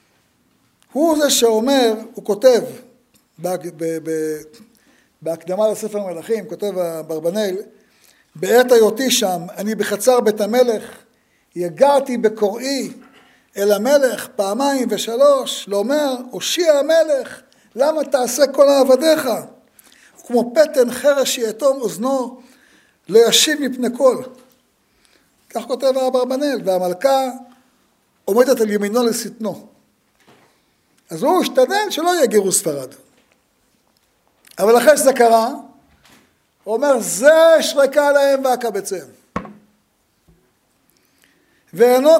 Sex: male